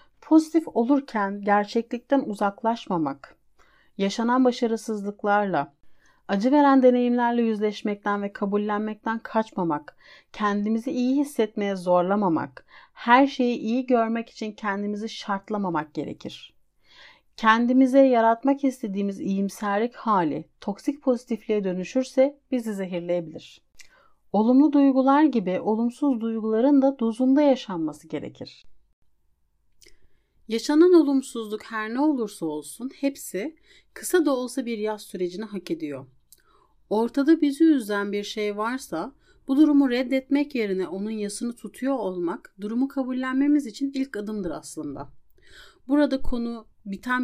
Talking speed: 105 wpm